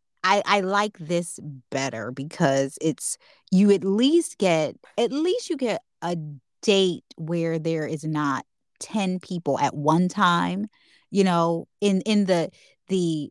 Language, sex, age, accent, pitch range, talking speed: English, female, 20-39, American, 155-200 Hz, 145 wpm